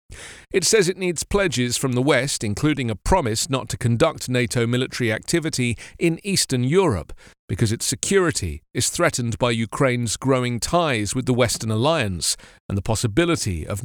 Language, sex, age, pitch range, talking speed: English, male, 40-59, 110-160 Hz, 160 wpm